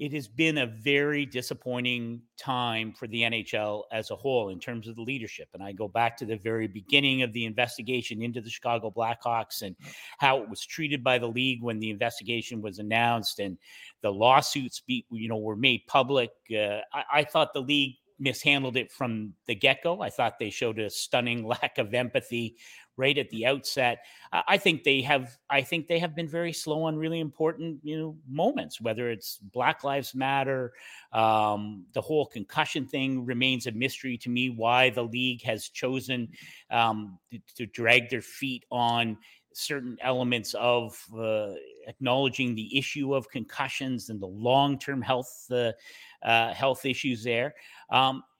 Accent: American